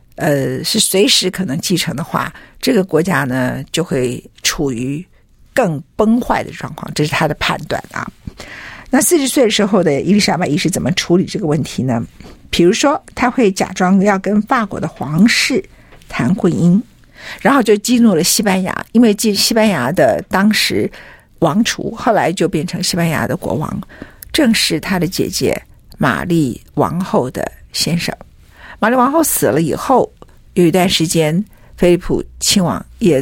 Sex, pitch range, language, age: female, 165-225 Hz, Chinese, 50-69